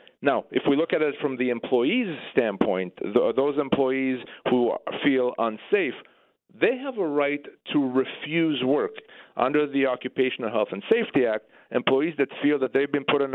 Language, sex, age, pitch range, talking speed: English, male, 40-59, 125-155 Hz, 165 wpm